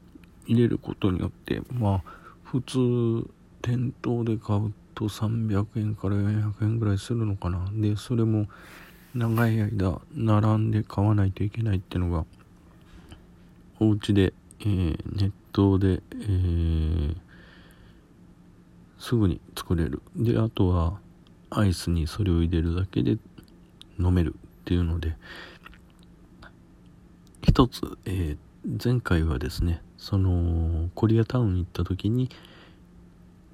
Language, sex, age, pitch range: Japanese, male, 50-69, 90-110 Hz